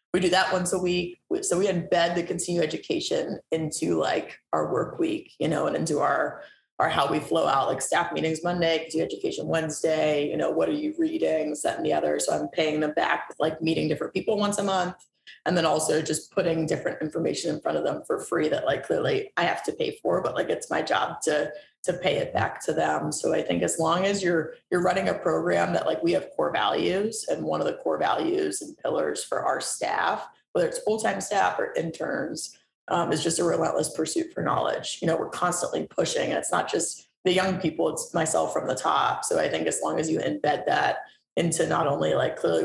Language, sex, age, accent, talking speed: English, female, 20-39, American, 225 wpm